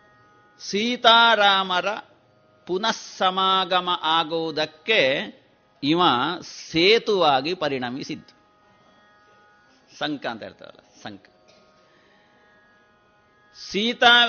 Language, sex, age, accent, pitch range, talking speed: Kannada, male, 50-69, native, 170-225 Hz, 50 wpm